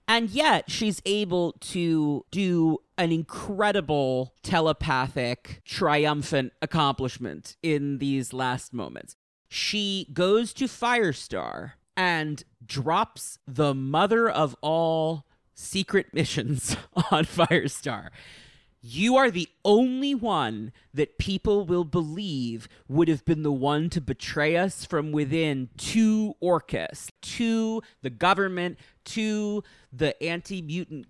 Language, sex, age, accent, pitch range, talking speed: English, male, 30-49, American, 140-190 Hz, 110 wpm